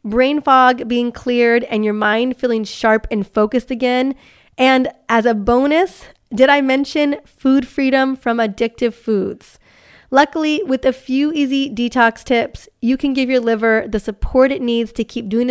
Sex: female